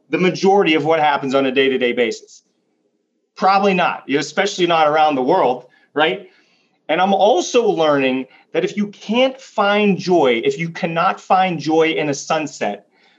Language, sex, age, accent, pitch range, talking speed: English, male, 30-49, American, 140-185 Hz, 160 wpm